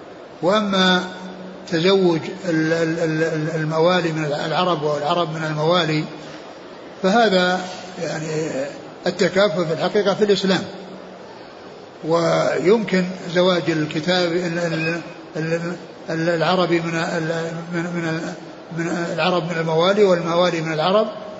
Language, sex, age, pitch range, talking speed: Arabic, male, 60-79, 165-180 Hz, 80 wpm